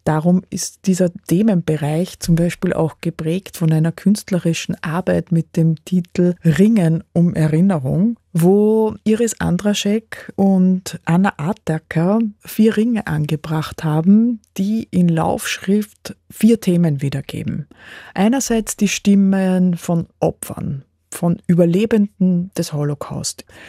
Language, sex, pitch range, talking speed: German, female, 165-205 Hz, 110 wpm